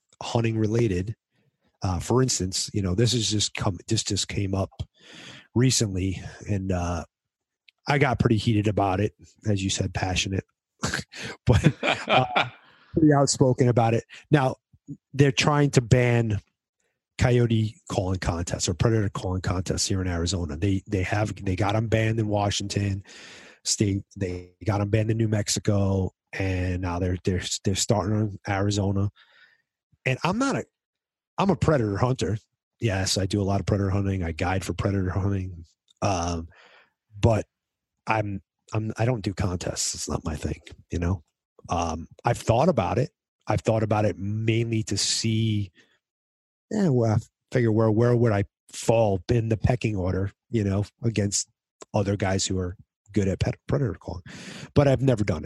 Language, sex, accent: English, male, American